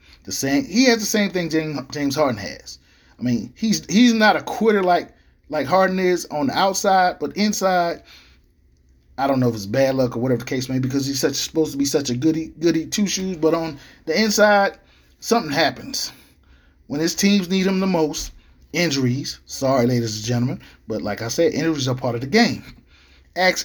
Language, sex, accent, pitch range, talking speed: English, male, American, 110-180 Hz, 200 wpm